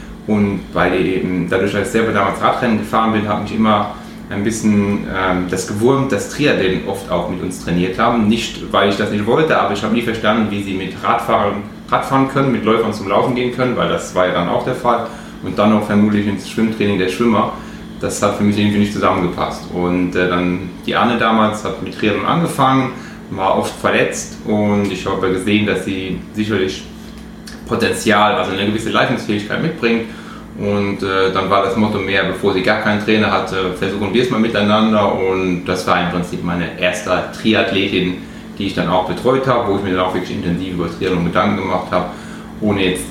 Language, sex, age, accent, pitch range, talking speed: German, male, 30-49, German, 95-110 Hz, 205 wpm